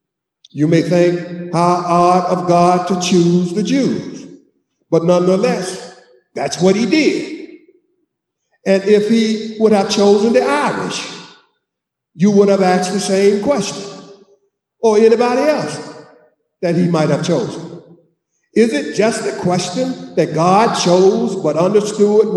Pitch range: 170-225 Hz